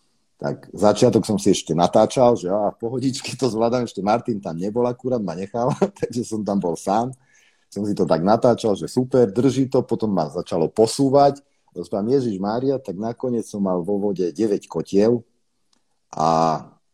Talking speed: 175 wpm